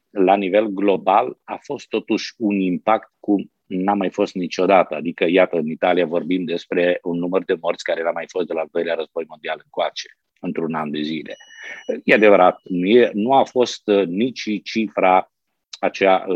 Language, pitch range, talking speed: Romanian, 85-100 Hz, 170 wpm